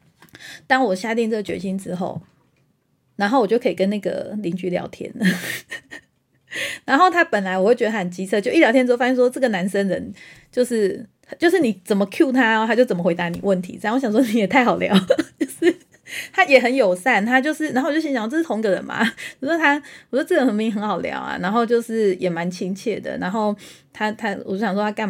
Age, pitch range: 30-49, 185-240 Hz